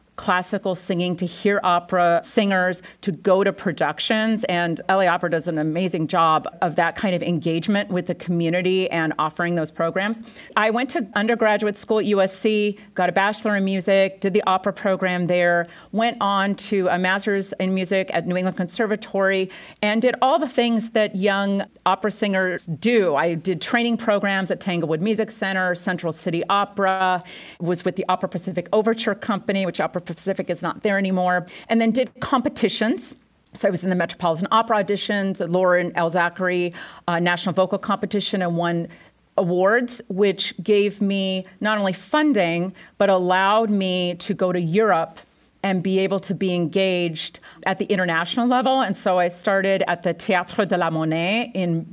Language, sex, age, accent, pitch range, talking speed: English, female, 40-59, American, 180-210 Hz, 170 wpm